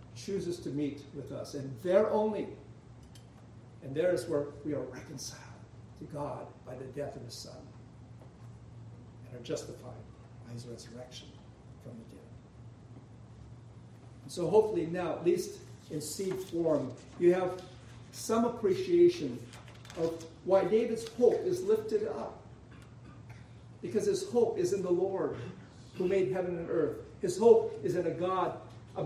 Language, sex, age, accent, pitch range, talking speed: English, male, 50-69, American, 125-190 Hz, 145 wpm